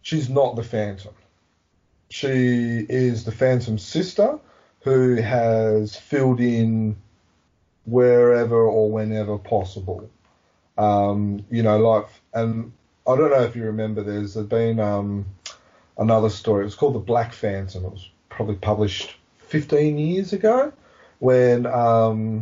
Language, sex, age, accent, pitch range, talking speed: English, male, 30-49, Australian, 100-120 Hz, 130 wpm